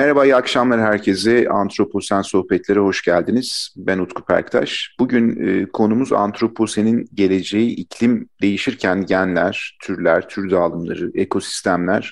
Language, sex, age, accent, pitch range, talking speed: Turkish, male, 40-59, native, 95-120 Hz, 115 wpm